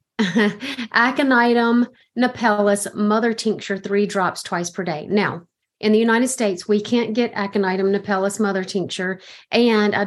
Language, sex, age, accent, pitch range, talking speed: English, female, 30-49, American, 195-225 Hz, 135 wpm